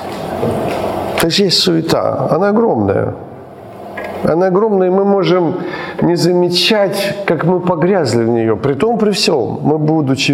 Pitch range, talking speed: 110-175 Hz, 135 wpm